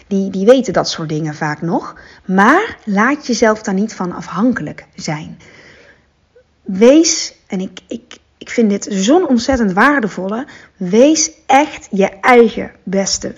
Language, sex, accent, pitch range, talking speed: Dutch, female, Dutch, 185-235 Hz, 135 wpm